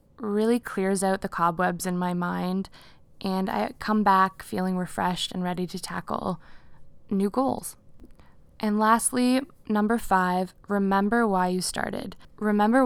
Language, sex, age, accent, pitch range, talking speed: English, female, 20-39, American, 180-210 Hz, 135 wpm